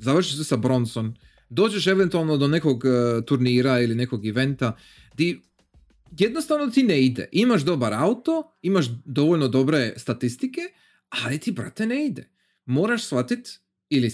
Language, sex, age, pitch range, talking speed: Croatian, male, 30-49, 120-185 Hz, 140 wpm